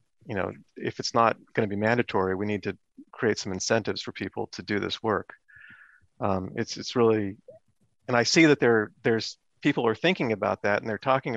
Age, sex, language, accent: 40-59, male, English, American